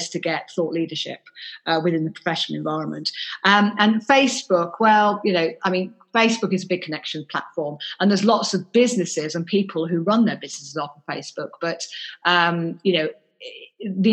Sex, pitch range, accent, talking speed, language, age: female, 170-210 Hz, British, 180 wpm, English, 40-59